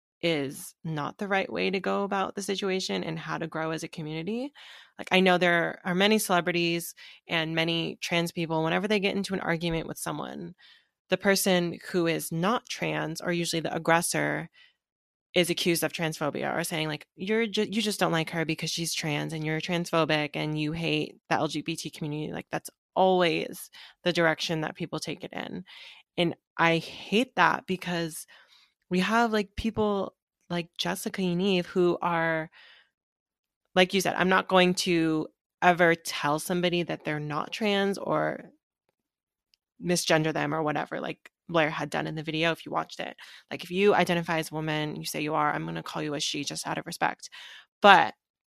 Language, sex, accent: English, female, American